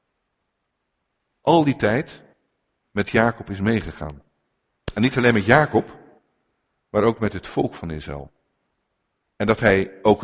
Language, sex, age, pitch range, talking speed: French, male, 50-69, 85-115 Hz, 135 wpm